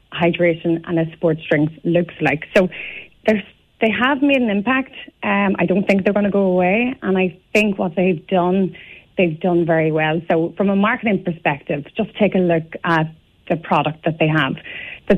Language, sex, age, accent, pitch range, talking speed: English, female, 30-49, Irish, 170-200 Hz, 190 wpm